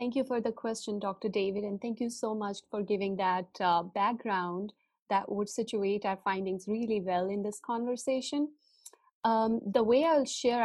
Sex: female